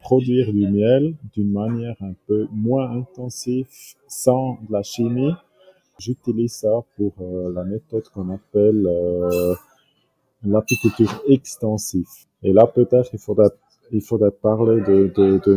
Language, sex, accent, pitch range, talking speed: French, male, French, 105-130 Hz, 125 wpm